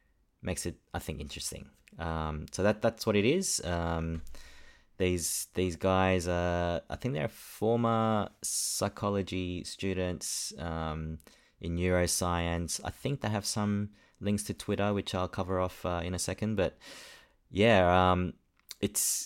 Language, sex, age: English, male, 20-39